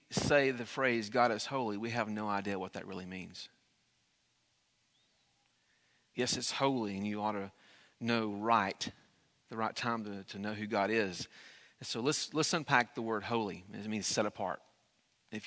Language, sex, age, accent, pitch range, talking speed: English, male, 40-59, American, 115-155 Hz, 175 wpm